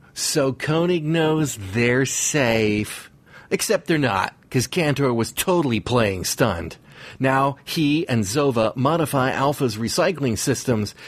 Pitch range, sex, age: 120-165 Hz, male, 40-59